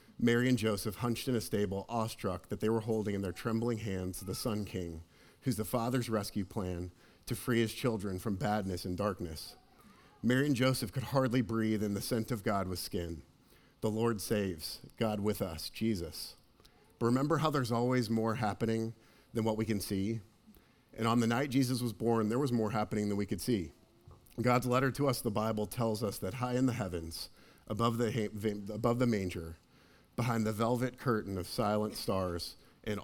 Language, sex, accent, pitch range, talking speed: English, male, American, 100-120 Hz, 190 wpm